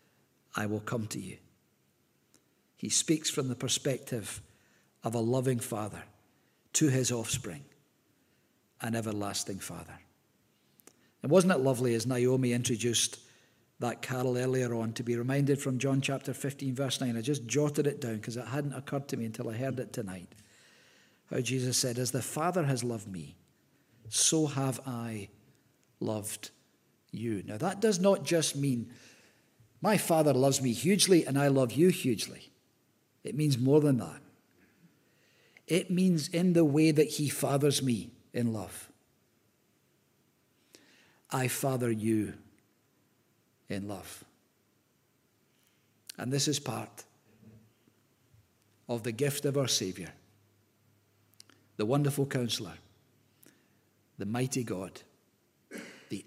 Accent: British